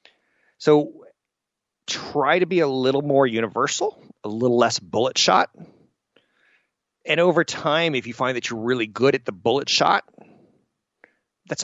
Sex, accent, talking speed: male, American, 145 wpm